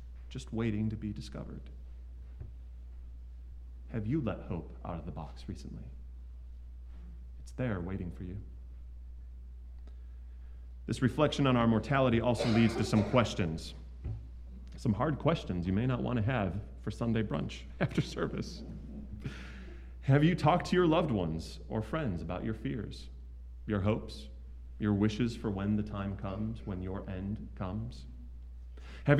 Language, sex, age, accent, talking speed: English, male, 30-49, American, 140 wpm